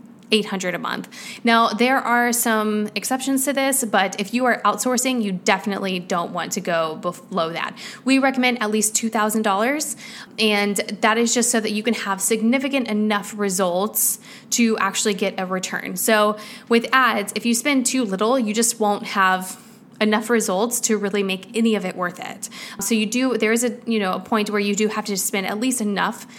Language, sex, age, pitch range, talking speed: English, female, 10-29, 200-235 Hz, 195 wpm